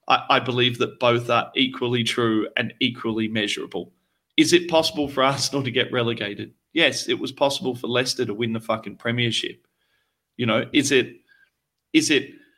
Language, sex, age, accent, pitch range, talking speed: English, male, 30-49, Australian, 115-135 Hz, 165 wpm